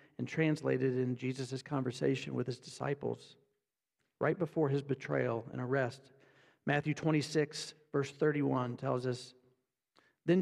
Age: 50-69